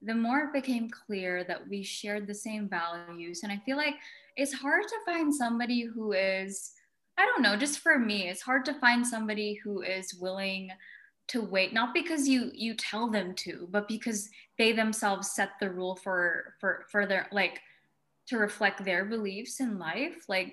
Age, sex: 10-29, female